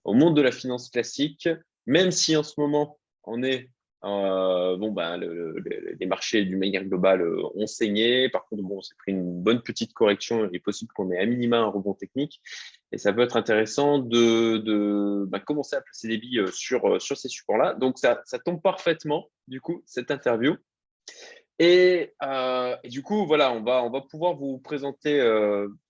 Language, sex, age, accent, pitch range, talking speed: French, male, 20-39, French, 105-145 Hz, 195 wpm